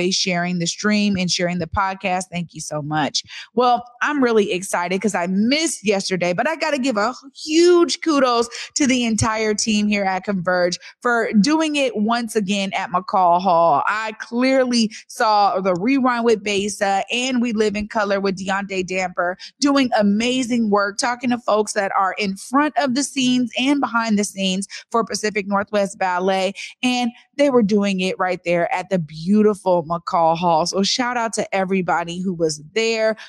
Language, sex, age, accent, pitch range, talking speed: English, female, 30-49, American, 185-240 Hz, 175 wpm